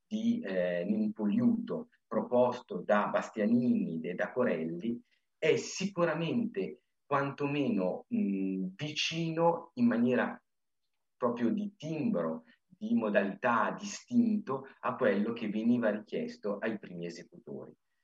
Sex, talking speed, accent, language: male, 100 wpm, native, Italian